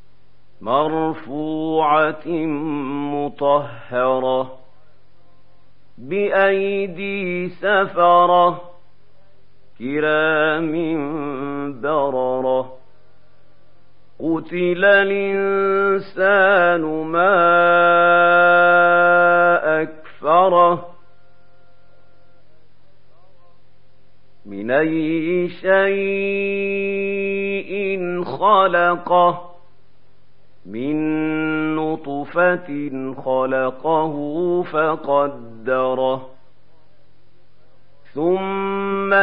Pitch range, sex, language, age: 145-180 Hz, male, Arabic, 50-69